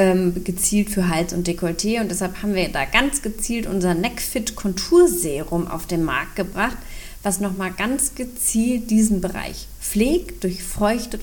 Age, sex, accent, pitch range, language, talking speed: 30-49, female, German, 180-225 Hz, German, 145 wpm